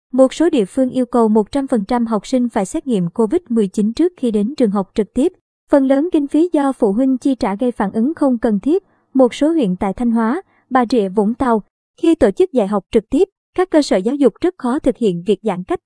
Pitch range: 225-280 Hz